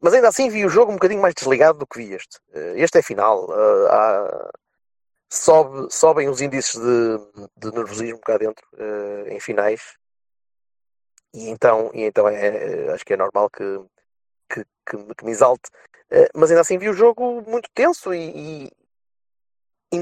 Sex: male